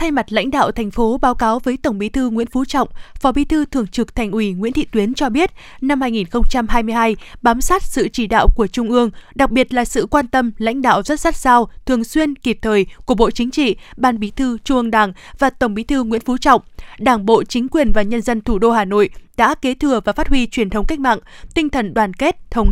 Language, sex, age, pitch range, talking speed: Vietnamese, female, 20-39, 220-270 Hz, 250 wpm